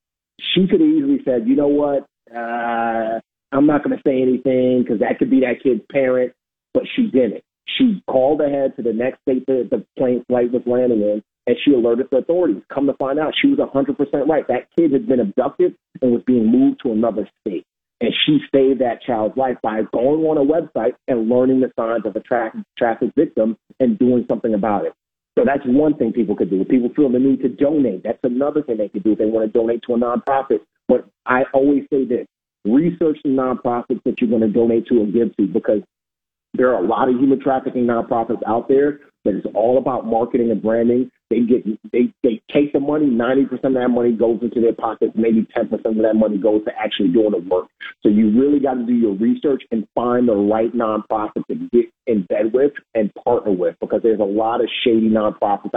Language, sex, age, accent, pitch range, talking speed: English, male, 40-59, American, 115-145 Hz, 220 wpm